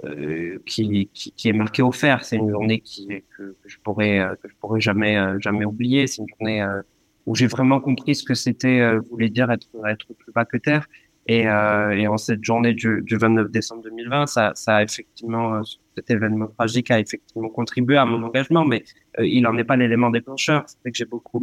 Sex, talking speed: male, 225 wpm